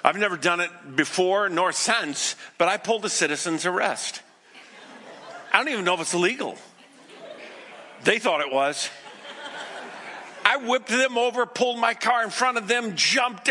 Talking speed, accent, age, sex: 160 wpm, American, 50-69, male